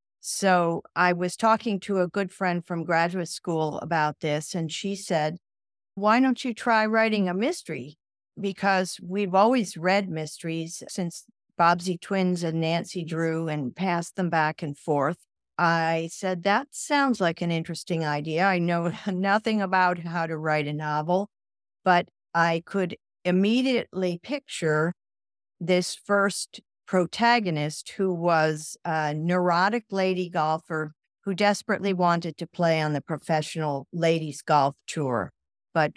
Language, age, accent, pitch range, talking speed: English, 50-69, American, 160-195 Hz, 140 wpm